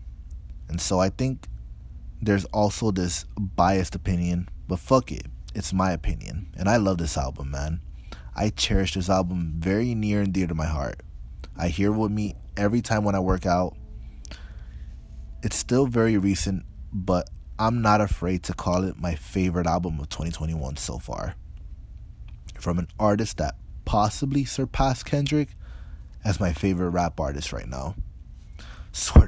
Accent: American